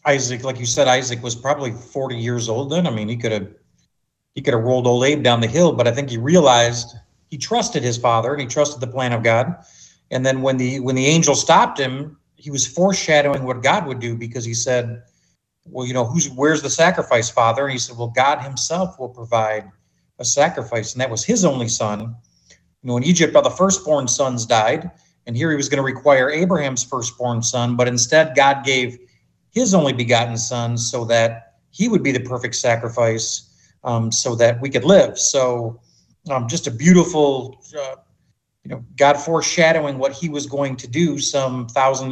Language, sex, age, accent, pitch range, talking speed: English, male, 40-59, American, 115-140 Hz, 205 wpm